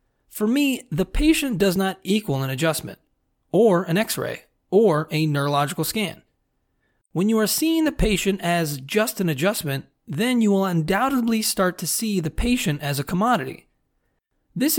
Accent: American